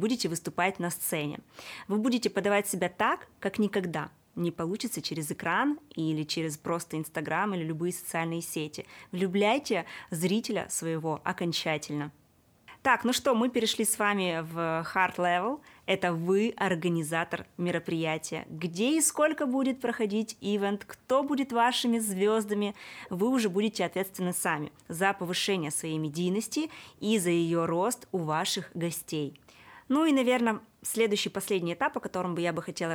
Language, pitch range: Russian, 170-215 Hz